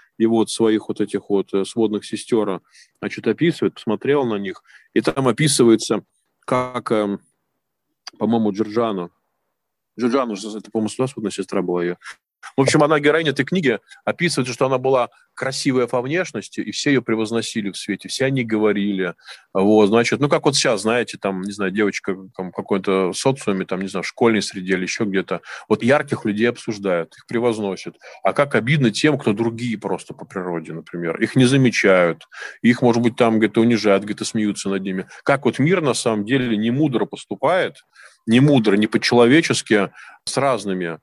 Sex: male